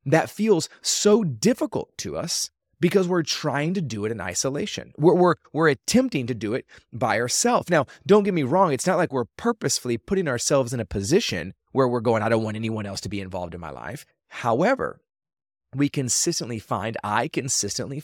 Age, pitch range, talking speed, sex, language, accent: 30-49, 110-160 Hz, 190 wpm, male, English, American